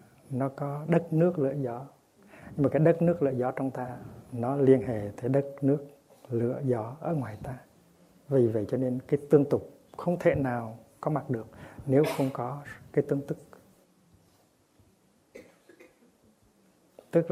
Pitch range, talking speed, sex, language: 120-145 Hz, 160 wpm, male, Vietnamese